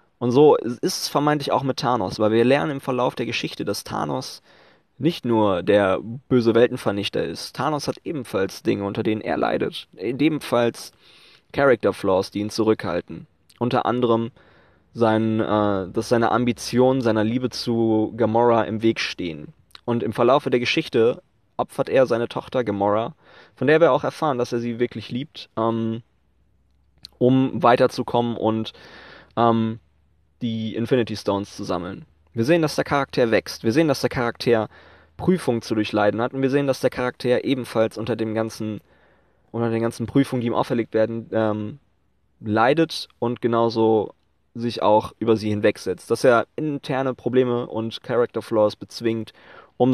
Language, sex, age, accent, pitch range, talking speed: German, male, 20-39, German, 110-125 Hz, 155 wpm